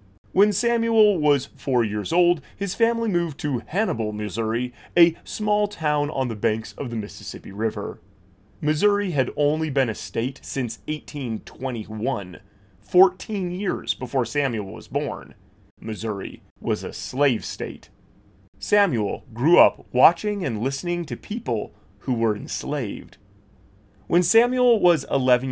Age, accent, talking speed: 30-49, American, 130 wpm